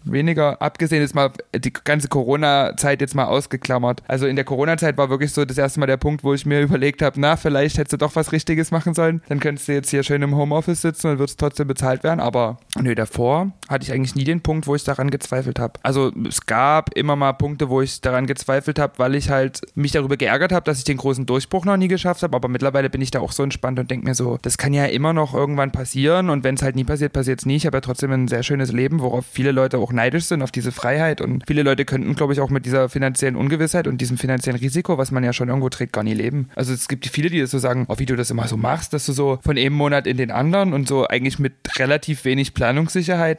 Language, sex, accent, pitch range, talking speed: German, male, German, 130-150 Hz, 265 wpm